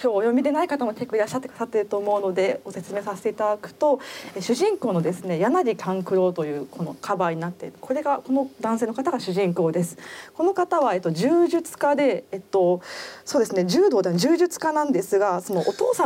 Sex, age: female, 20-39